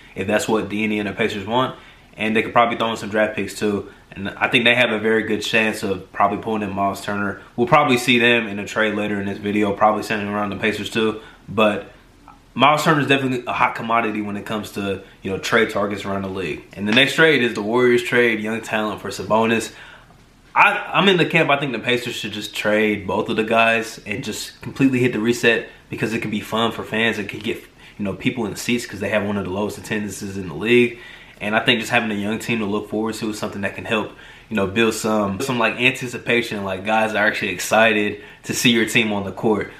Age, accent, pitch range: 20-39, American, 105-120 Hz